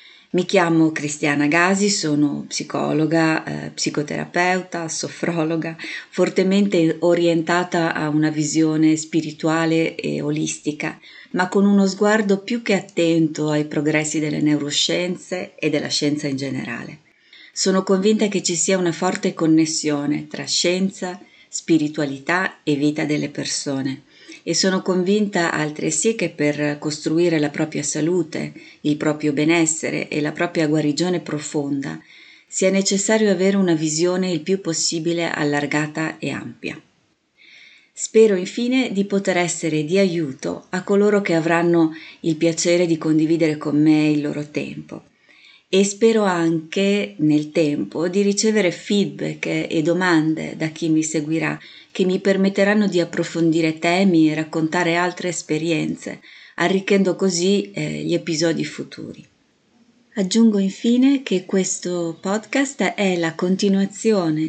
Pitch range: 155-190 Hz